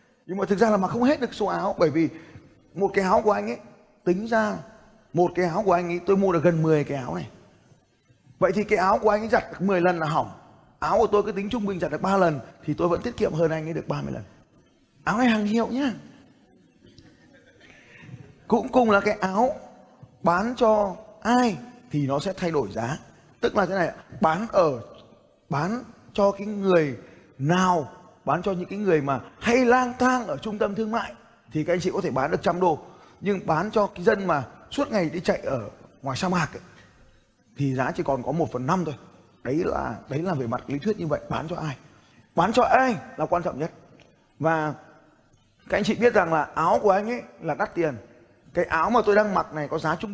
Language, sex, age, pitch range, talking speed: Vietnamese, male, 20-39, 155-210 Hz, 230 wpm